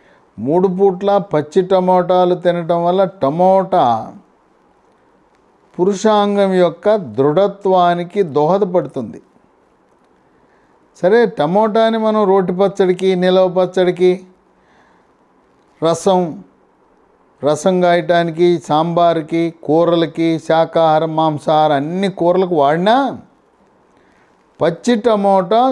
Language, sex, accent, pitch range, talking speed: English, male, Indian, 165-200 Hz, 45 wpm